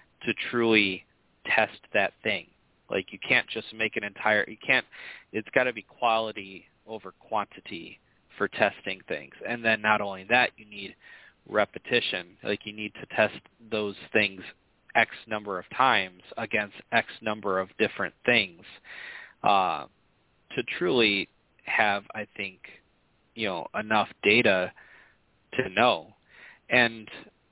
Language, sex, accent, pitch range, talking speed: English, male, American, 100-115 Hz, 135 wpm